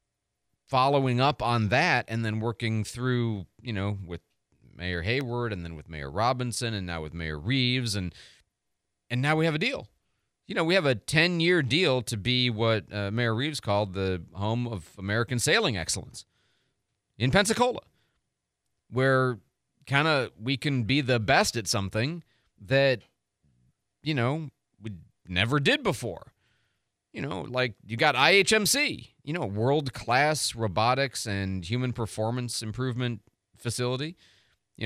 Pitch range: 105-135 Hz